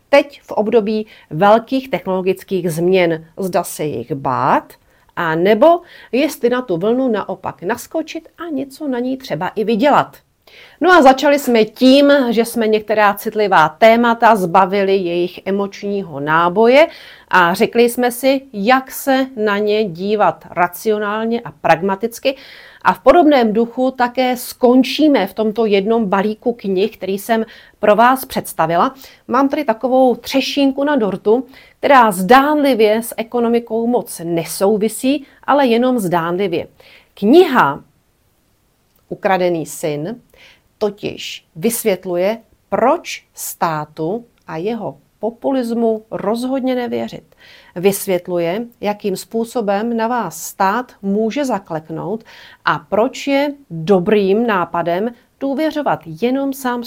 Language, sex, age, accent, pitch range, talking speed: Czech, female, 40-59, native, 195-255 Hz, 115 wpm